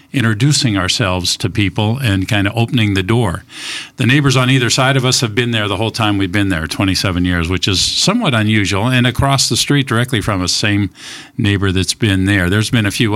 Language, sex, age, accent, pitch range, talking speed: English, male, 50-69, American, 95-125 Hz, 220 wpm